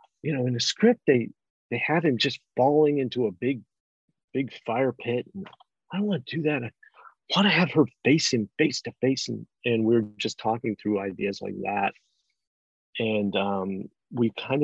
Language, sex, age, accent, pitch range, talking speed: English, male, 40-59, American, 100-120 Hz, 195 wpm